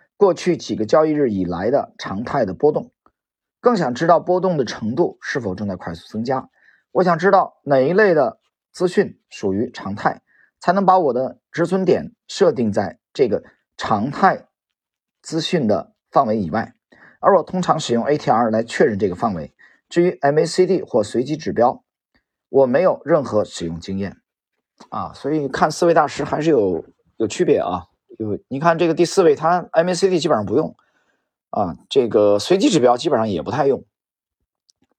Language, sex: Chinese, male